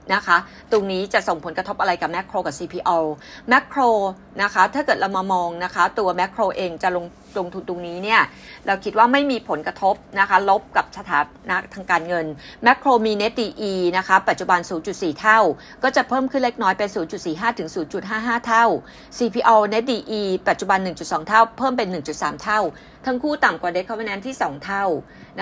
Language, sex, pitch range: Thai, female, 185-230 Hz